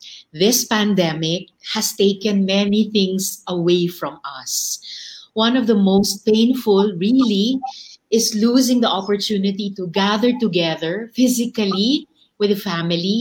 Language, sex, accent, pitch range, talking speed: Filipino, female, native, 195-255 Hz, 115 wpm